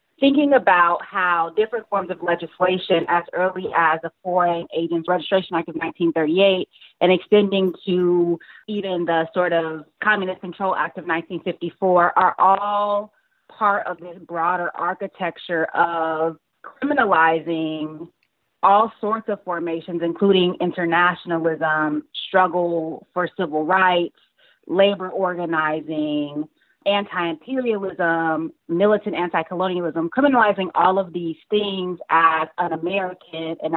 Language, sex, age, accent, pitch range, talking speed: English, female, 30-49, American, 165-195 Hz, 110 wpm